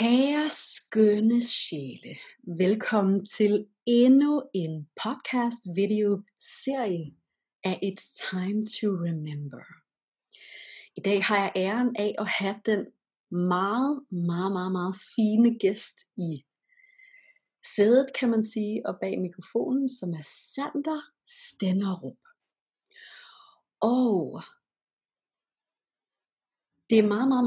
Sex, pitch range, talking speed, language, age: female, 190-250 Hz, 100 wpm, English, 30-49